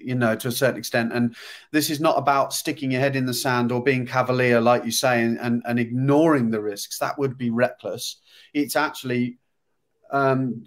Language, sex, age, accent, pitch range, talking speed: English, male, 30-49, British, 120-150 Hz, 200 wpm